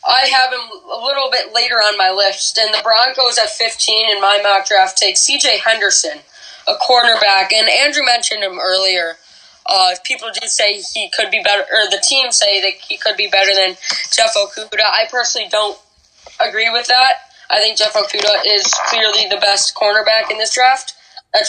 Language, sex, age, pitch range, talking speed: English, female, 10-29, 205-260 Hz, 190 wpm